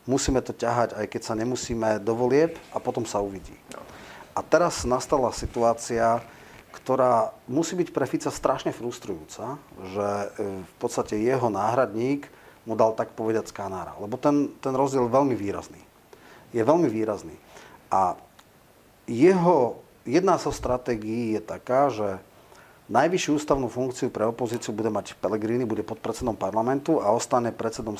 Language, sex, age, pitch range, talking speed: Slovak, male, 40-59, 110-130 Hz, 140 wpm